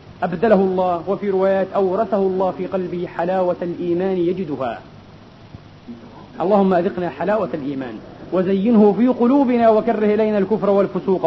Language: Arabic